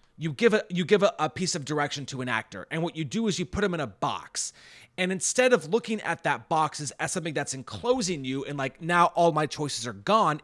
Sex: male